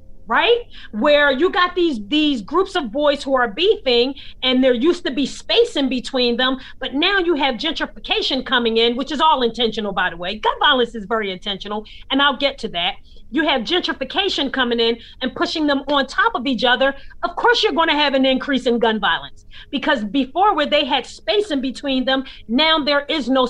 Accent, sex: American, female